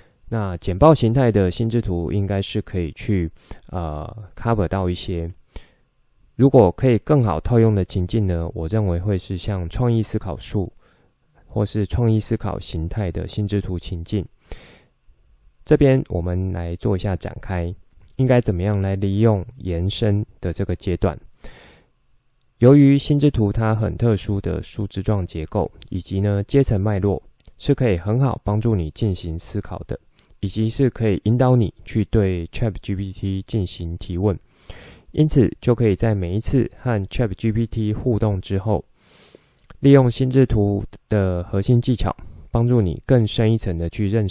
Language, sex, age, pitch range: Chinese, male, 20-39, 90-115 Hz